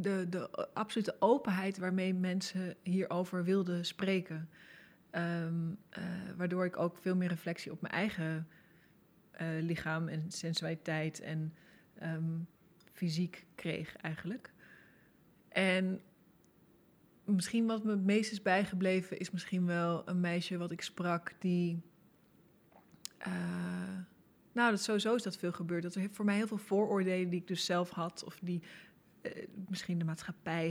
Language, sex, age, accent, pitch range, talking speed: Dutch, female, 20-39, Dutch, 175-195 Hz, 140 wpm